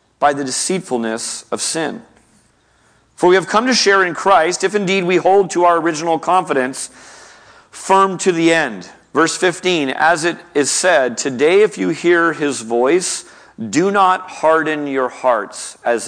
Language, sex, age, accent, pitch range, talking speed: English, male, 40-59, American, 120-175 Hz, 160 wpm